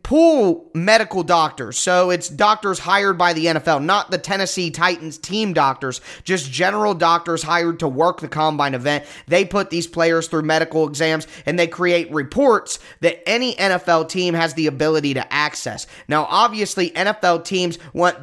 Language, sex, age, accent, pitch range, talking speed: English, male, 20-39, American, 155-180 Hz, 165 wpm